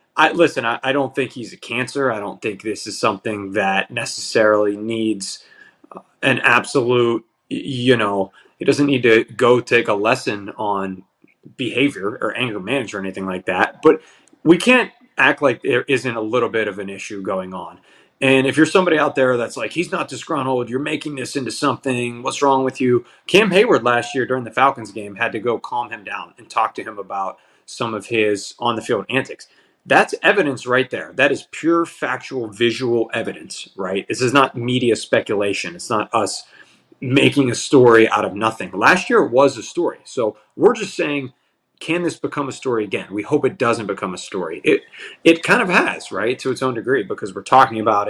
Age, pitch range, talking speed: 20-39, 110-135 Hz, 195 wpm